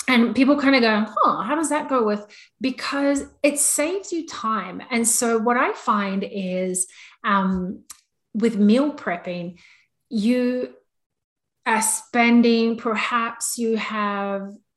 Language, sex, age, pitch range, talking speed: English, female, 30-49, 195-245 Hz, 130 wpm